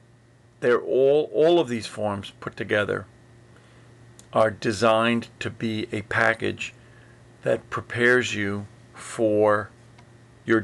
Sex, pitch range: male, 115-125 Hz